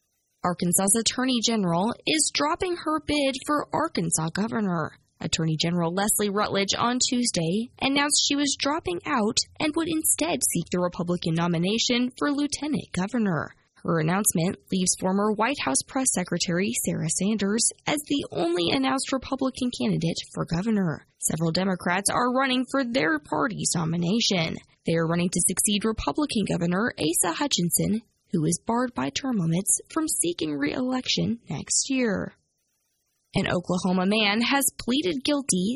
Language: English